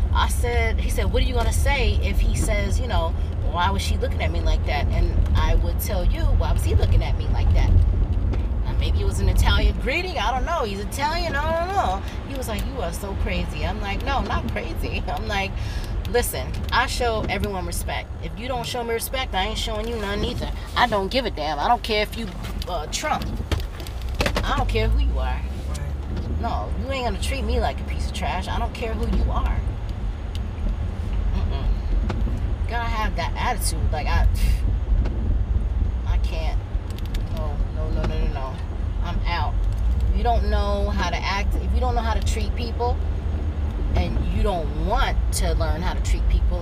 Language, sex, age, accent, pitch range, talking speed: English, female, 30-49, American, 80-95 Hz, 205 wpm